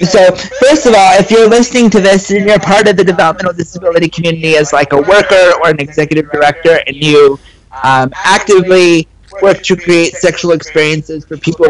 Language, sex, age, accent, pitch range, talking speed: English, male, 30-49, American, 150-190 Hz, 185 wpm